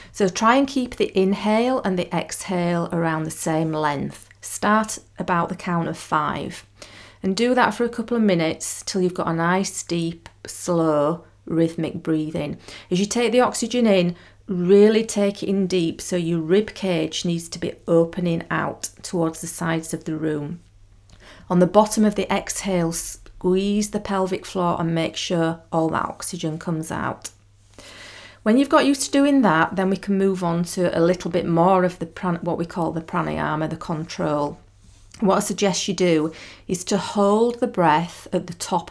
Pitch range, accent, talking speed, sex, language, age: 160-195 Hz, British, 185 wpm, female, English, 40-59